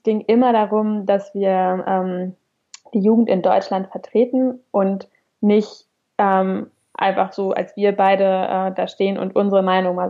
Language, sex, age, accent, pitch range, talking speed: English, female, 20-39, German, 195-225 Hz, 155 wpm